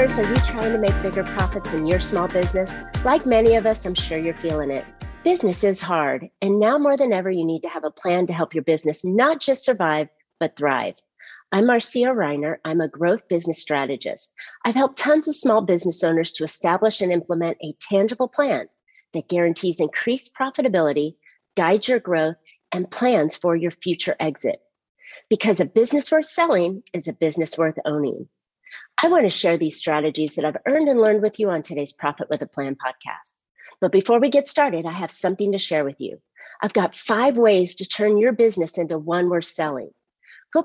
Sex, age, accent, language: female, 40-59, American, English